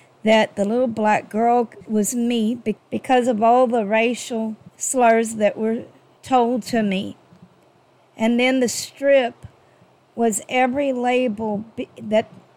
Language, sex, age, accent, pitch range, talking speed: English, female, 50-69, American, 215-255 Hz, 125 wpm